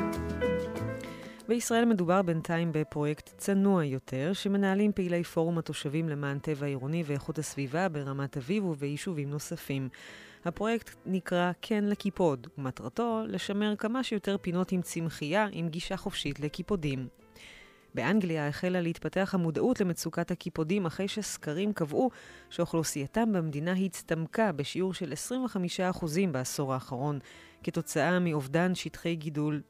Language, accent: Hebrew, native